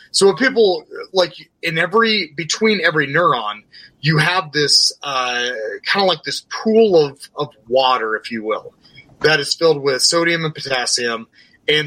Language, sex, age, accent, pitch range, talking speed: English, male, 30-49, American, 130-160 Hz, 160 wpm